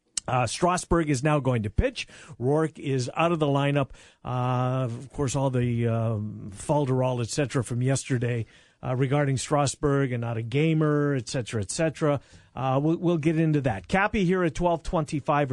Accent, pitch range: American, 125-155 Hz